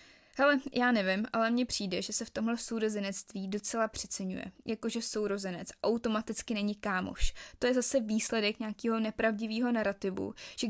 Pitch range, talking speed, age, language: 200-240 Hz, 145 wpm, 20-39, Czech